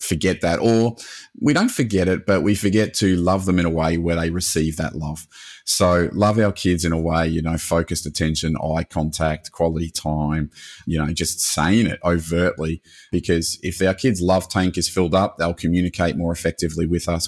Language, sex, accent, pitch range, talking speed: English, male, Australian, 80-95 Hz, 200 wpm